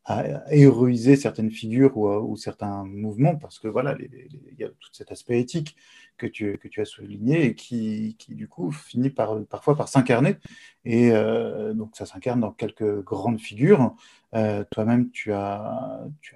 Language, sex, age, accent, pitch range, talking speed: French, male, 30-49, French, 105-130 Hz, 175 wpm